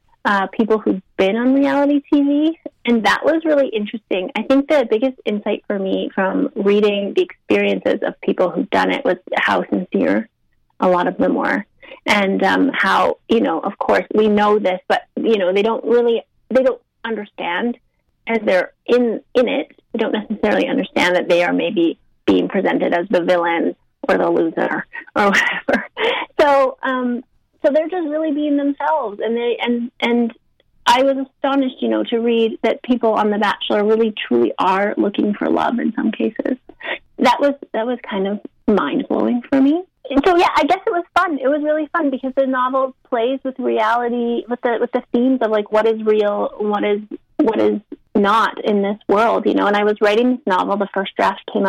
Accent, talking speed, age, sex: American, 195 wpm, 30-49, female